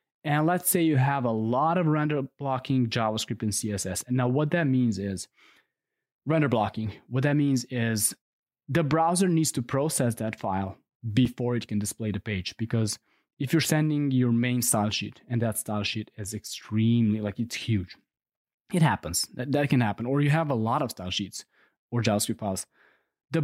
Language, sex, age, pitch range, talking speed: English, male, 20-39, 105-140 Hz, 185 wpm